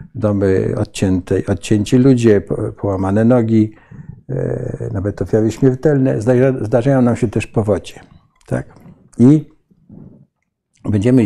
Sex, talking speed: male, 90 wpm